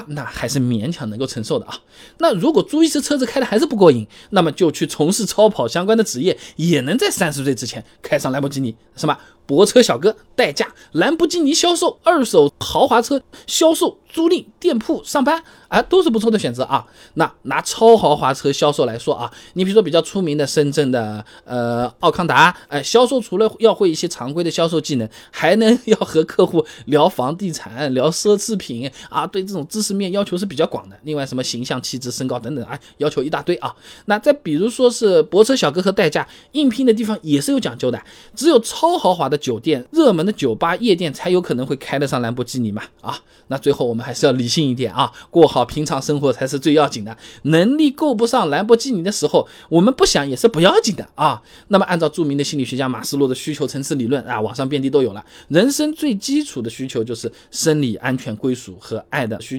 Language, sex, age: Chinese, male, 20-39